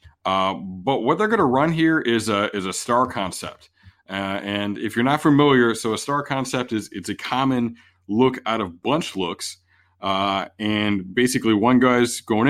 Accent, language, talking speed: American, English, 185 wpm